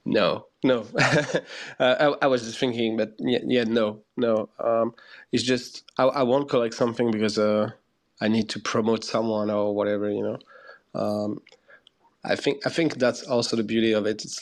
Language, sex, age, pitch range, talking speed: English, male, 20-39, 110-125 Hz, 185 wpm